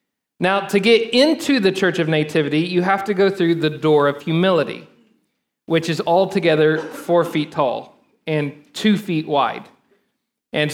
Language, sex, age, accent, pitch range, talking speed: English, male, 40-59, American, 150-190 Hz, 155 wpm